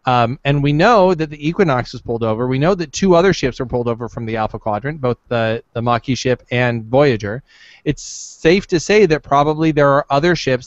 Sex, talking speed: male, 225 wpm